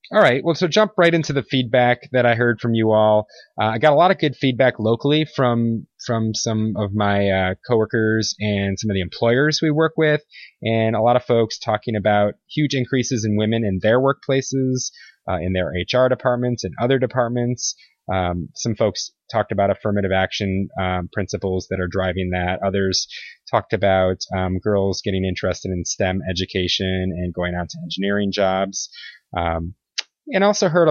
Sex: male